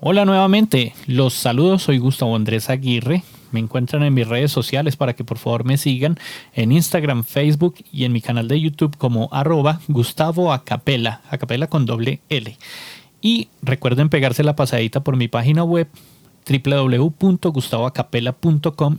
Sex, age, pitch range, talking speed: male, 30-49, 120-150 Hz, 150 wpm